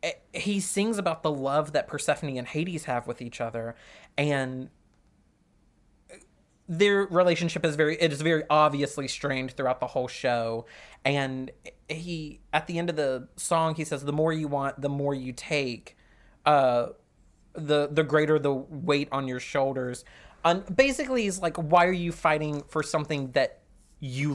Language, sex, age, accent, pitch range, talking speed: English, male, 30-49, American, 135-190 Hz, 165 wpm